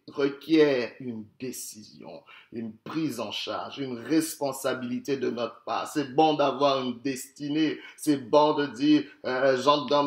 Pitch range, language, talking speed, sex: 130-170 Hz, French, 145 wpm, male